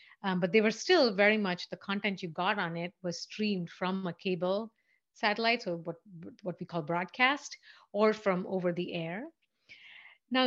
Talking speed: 180 wpm